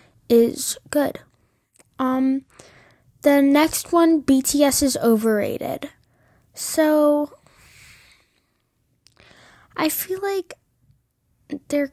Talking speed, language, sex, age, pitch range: 70 wpm, English, female, 10-29, 230-300 Hz